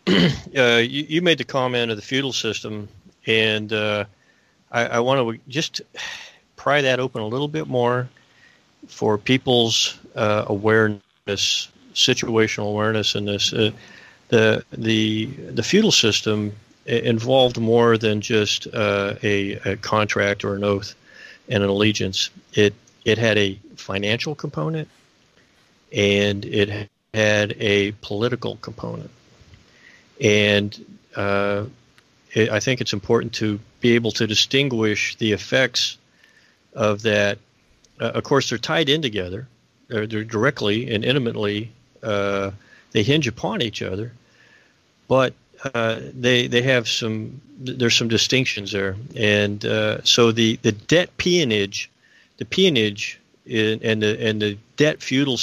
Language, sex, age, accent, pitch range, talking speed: English, male, 40-59, American, 105-120 Hz, 135 wpm